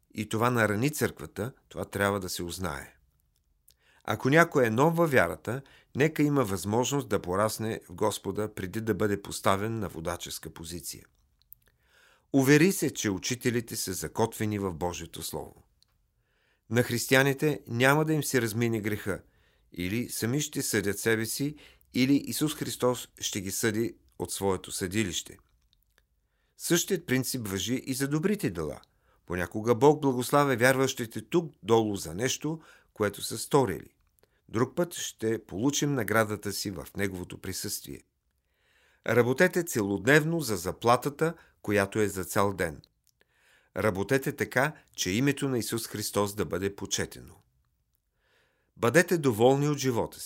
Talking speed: 135 wpm